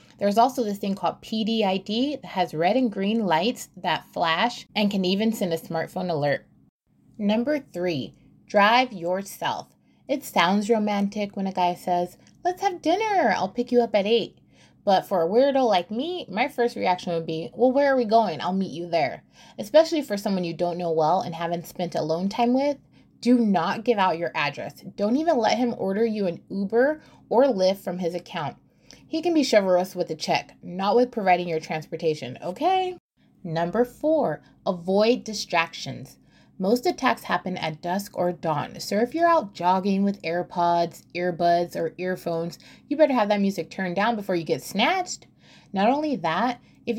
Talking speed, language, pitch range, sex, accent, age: 180 wpm, English, 175-240 Hz, female, American, 20-39